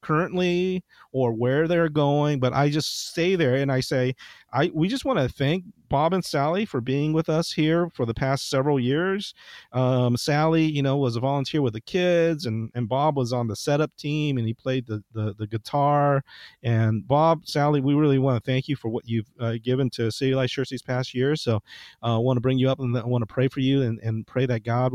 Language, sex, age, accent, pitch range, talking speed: English, male, 40-59, American, 115-145 Hz, 235 wpm